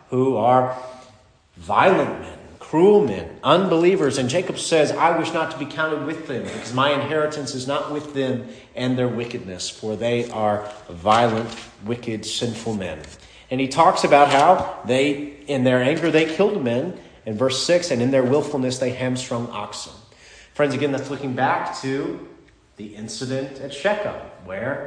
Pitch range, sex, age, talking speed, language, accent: 120-155 Hz, male, 40-59, 165 wpm, English, American